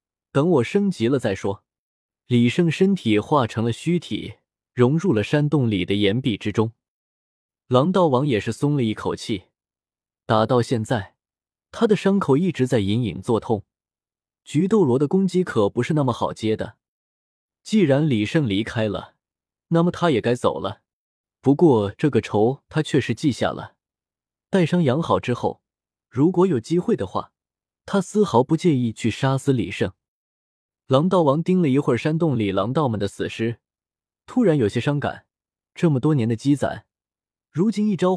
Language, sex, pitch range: Chinese, male, 110-165 Hz